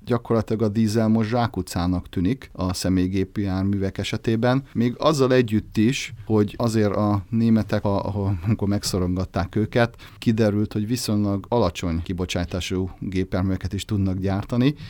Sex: male